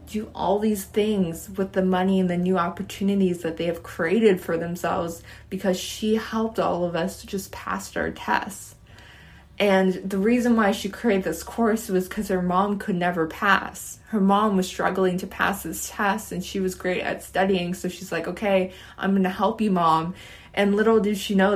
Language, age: English, 20-39